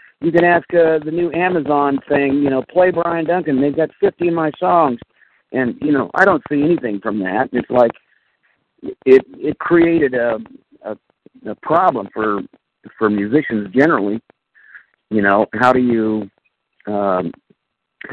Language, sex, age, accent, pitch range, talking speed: English, male, 50-69, American, 110-155 Hz, 155 wpm